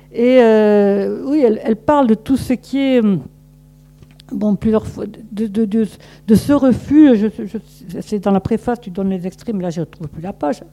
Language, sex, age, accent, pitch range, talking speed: French, female, 50-69, French, 180-230 Hz, 205 wpm